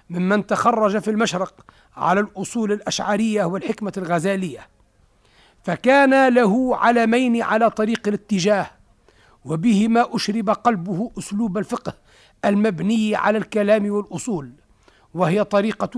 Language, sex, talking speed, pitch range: Arabic, male, 100 wpm, 190-225 Hz